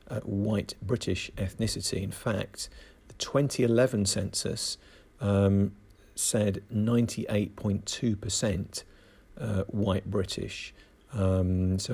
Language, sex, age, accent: English, male, 40-59, British